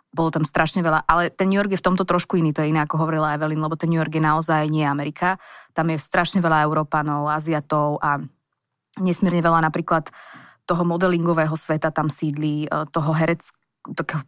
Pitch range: 155-180 Hz